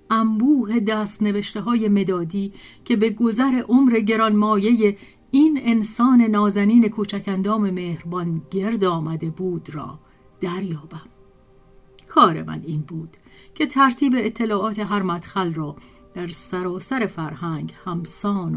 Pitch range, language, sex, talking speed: 170-215 Hz, Persian, female, 115 wpm